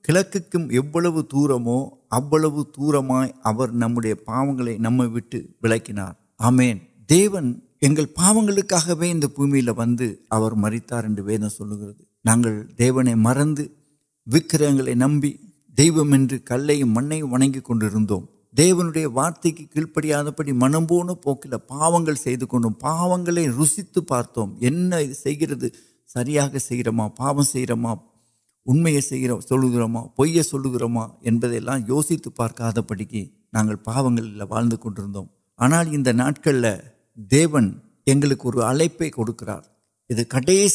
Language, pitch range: Urdu, 115-150 Hz